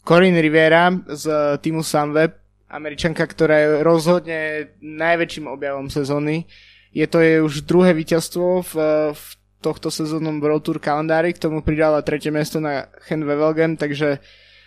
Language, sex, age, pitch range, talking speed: Slovak, male, 20-39, 150-175 Hz, 140 wpm